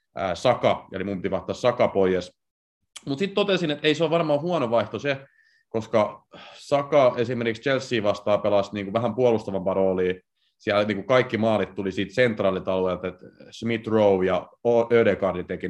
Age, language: 30-49, Finnish